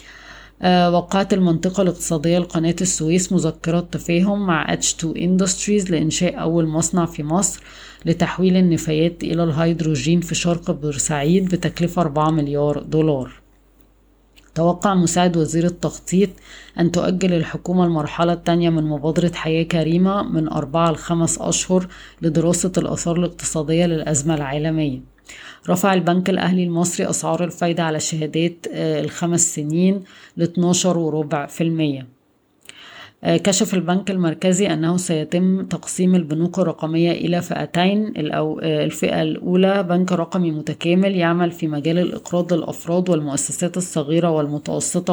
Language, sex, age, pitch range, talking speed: Arabic, female, 20-39, 155-180 Hz, 110 wpm